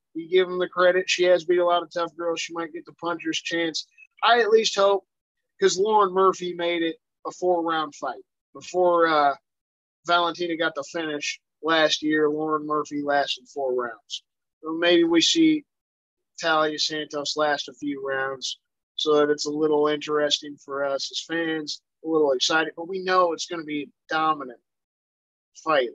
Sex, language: male, English